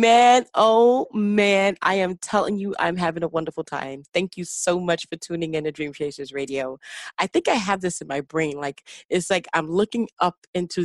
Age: 30-49